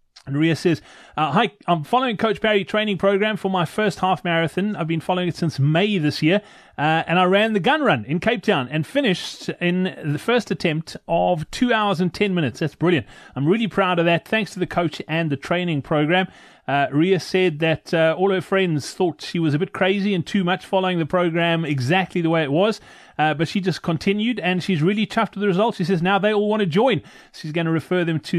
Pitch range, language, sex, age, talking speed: 165-200 Hz, English, male, 30-49, 235 wpm